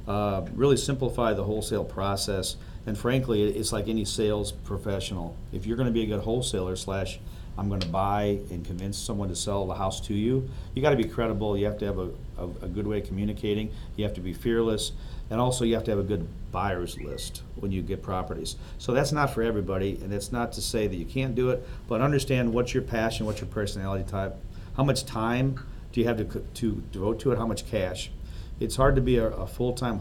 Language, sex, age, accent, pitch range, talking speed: English, male, 50-69, American, 95-115 Hz, 220 wpm